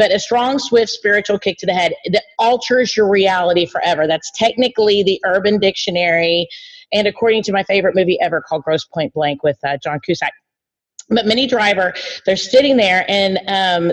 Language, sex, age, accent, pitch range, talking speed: English, female, 40-59, American, 180-220 Hz, 180 wpm